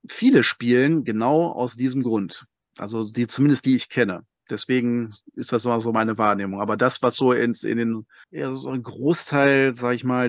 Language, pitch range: German, 110-135 Hz